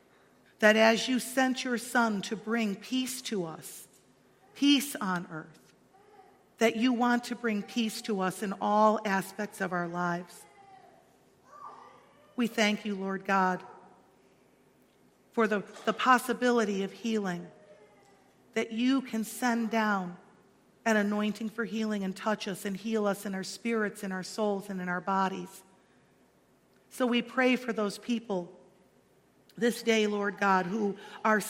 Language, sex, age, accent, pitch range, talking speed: English, female, 50-69, American, 195-245 Hz, 145 wpm